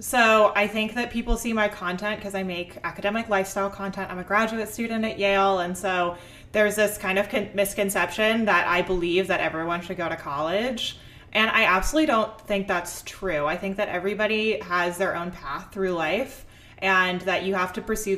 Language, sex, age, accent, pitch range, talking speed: English, female, 20-39, American, 175-210 Hz, 195 wpm